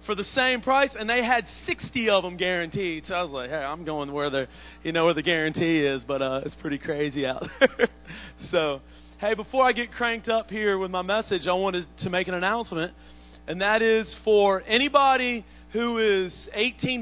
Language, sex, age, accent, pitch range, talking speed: English, male, 30-49, American, 180-220 Hz, 195 wpm